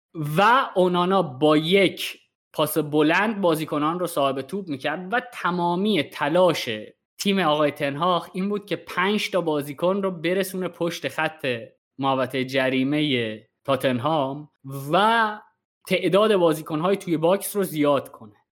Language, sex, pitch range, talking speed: Persian, male, 130-170 Hz, 125 wpm